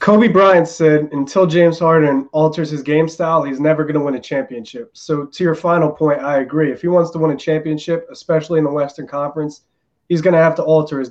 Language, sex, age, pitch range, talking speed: English, male, 20-39, 145-170 Hz, 230 wpm